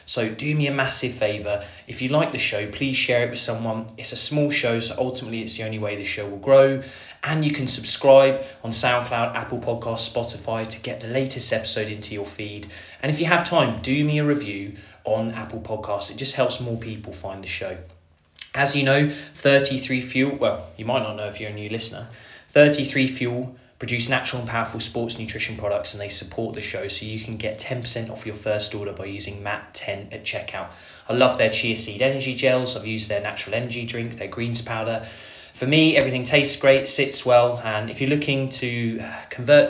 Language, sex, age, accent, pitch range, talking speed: English, male, 20-39, British, 105-130 Hz, 210 wpm